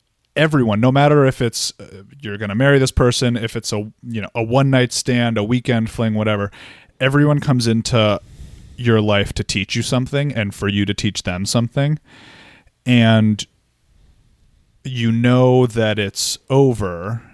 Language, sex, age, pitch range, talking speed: English, male, 30-49, 105-130 Hz, 150 wpm